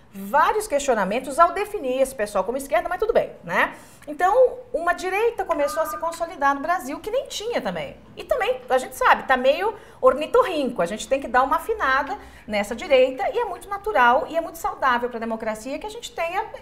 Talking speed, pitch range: 205 wpm, 240-335 Hz